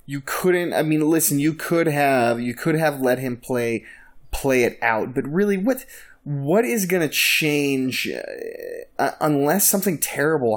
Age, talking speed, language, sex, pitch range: 20-39, 160 wpm, English, male, 110-140 Hz